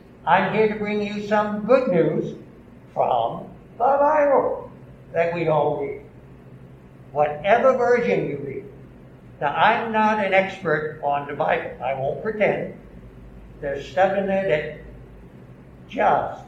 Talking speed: 130 wpm